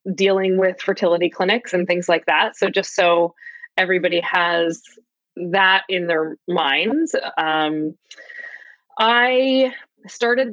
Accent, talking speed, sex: American, 115 wpm, female